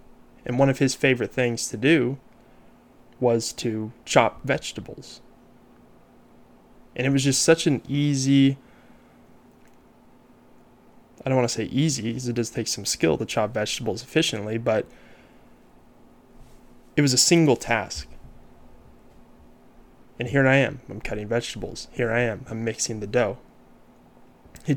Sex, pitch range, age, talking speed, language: male, 115-135 Hz, 20-39, 135 wpm, English